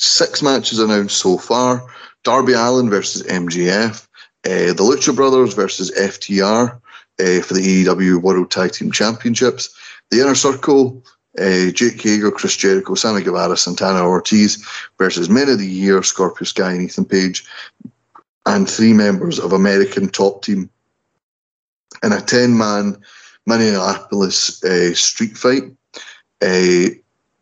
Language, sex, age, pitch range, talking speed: English, male, 30-49, 95-115 Hz, 130 wpm